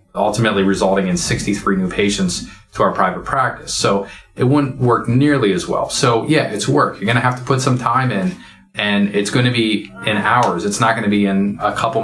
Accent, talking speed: American, 220 wpm